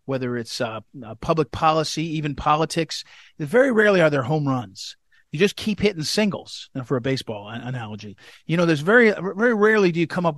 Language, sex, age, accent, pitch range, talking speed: English, male, 40-59, American, 135-165 Hz, 210 wpm